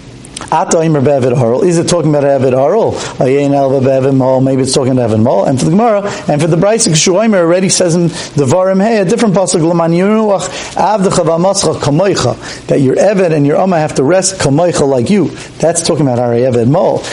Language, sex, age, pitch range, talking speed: English, male, 50-69, 130-175 Hz, 160 wpm